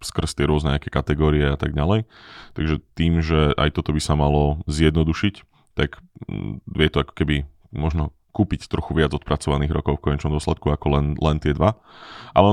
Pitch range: 75-85 Hz